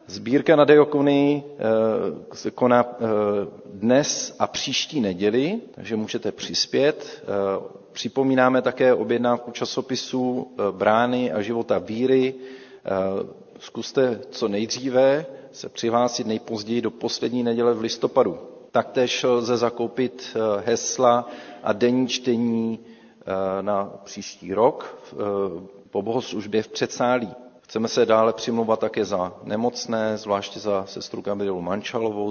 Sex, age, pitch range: male, 40-59, 95-120 Hz